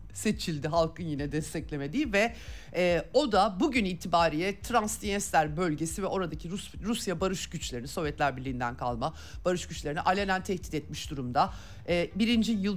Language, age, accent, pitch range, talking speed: Turkish, 50-69, native, 155-215 Hz, 140 wpm